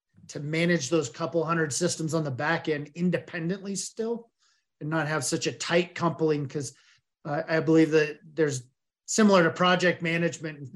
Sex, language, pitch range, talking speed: male, English, 150-175 Hz, 160 wpm